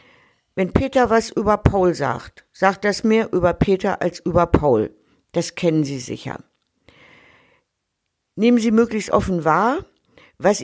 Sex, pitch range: female, 170-210 Hz